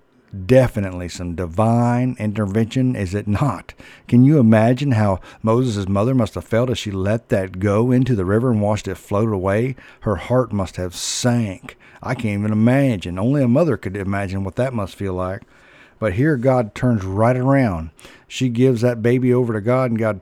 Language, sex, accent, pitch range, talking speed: English, male, American, 95-125 Hz, 185 wpm